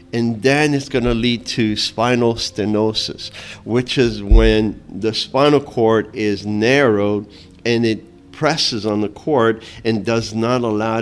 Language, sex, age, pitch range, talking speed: English, male, 50-69, 105-145 Hz, 145 wpm